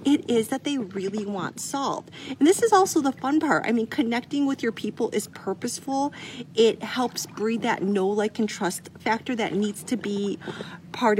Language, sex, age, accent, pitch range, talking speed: English, female, 40-59, American, 185-240 Hz, 195 wpm